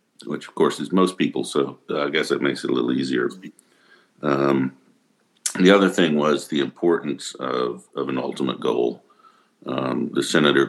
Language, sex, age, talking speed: English, male, 60-79, 170 wpm